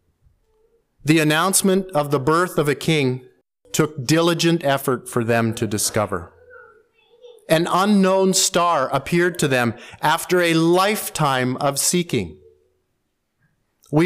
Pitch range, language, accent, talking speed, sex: 140-180 Hz, English, American, 115 wpm, male